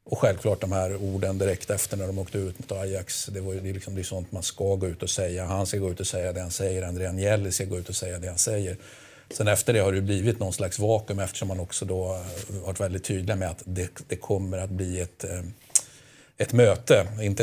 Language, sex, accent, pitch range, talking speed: Swedish, male, native, 95-110 Hz, 250 wpm